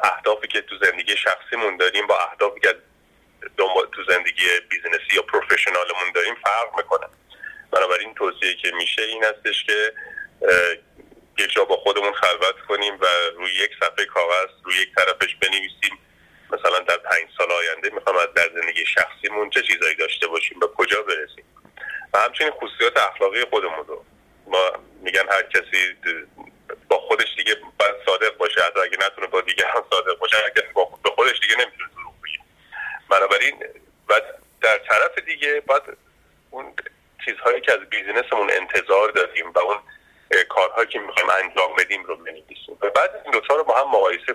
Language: Persian